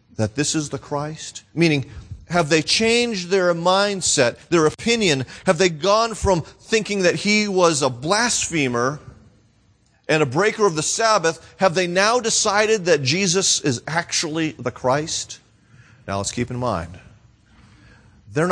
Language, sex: English, male